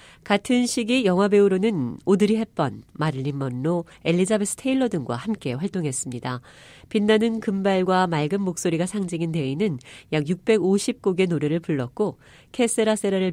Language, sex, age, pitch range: Korean, female, 40-59, 150-215 Hz